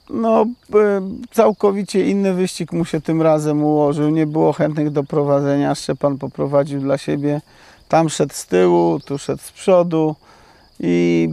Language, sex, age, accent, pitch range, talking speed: Polish, male, 40-59, native, 135-160 Hz, 155 wpm